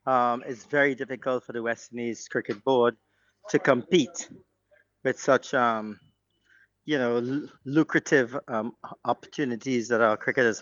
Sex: male